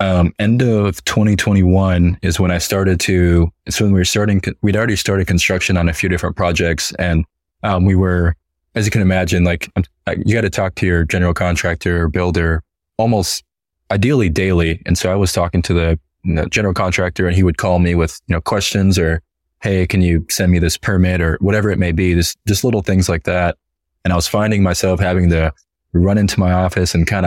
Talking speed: 210 wpm